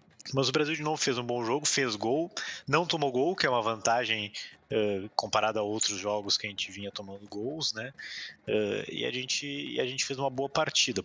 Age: 20-39